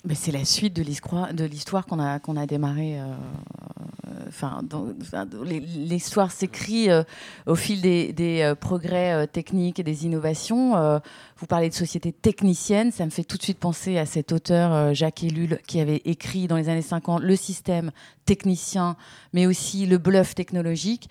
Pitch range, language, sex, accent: 165-200 Hz, French, female, French